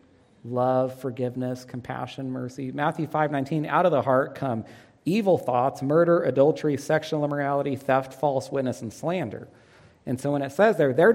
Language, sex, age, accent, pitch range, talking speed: English, male, 40-59, American, 125-160 Hz, 160 wpm